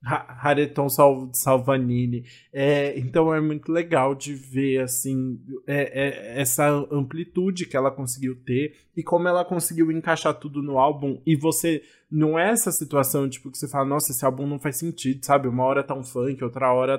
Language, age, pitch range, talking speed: Portuguese, 20-39, 130-150 Hz, 185 wpm